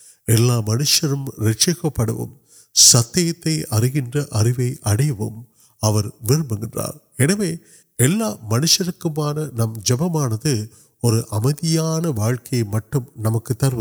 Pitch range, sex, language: 115-155 Hz, male, Urdu